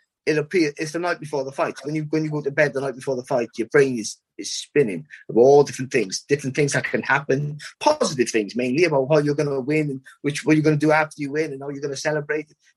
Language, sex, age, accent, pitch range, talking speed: English, male, 30-49, British, 140-165 Hz, 275 wpm